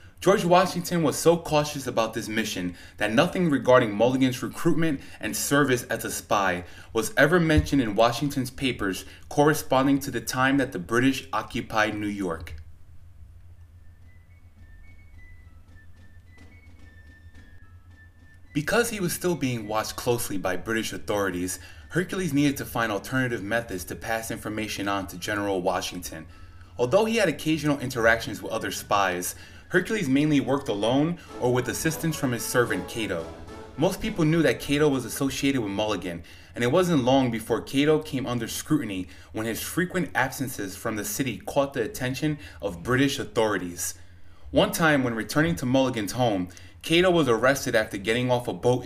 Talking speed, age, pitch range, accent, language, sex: 150 wpm, 20-39, 90-140 Hz, American, English, male